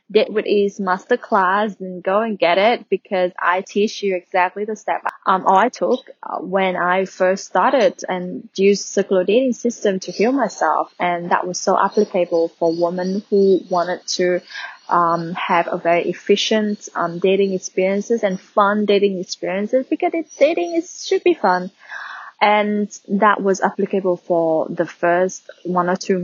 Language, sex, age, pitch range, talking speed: English, female, 20-39, 180-215 Hz, 165 wpm